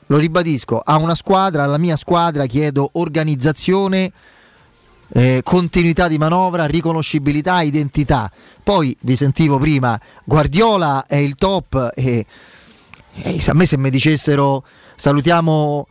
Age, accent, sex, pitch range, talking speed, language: 30-49, native, male, 135-165 Hz, 120 wpm, Italian